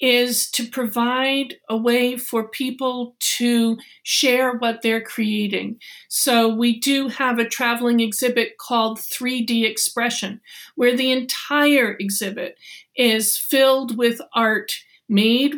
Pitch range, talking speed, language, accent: 225-265 Hz, 120 wpm, English, American